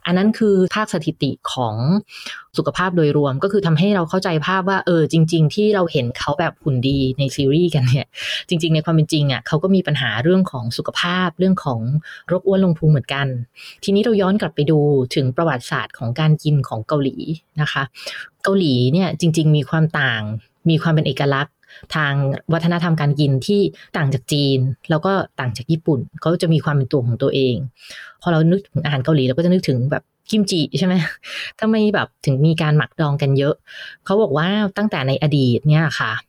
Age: 20-39